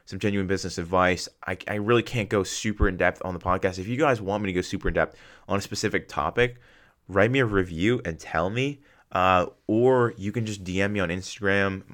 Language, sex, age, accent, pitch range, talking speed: English, male, 20-39, American, 85-100 Hz, 215 wpm